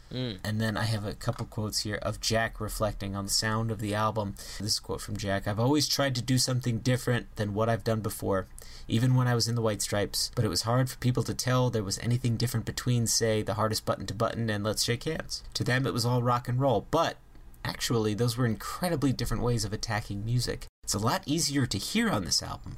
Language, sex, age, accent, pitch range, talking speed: English, male, 30-49, American, 105-125 Hz, 245 wpm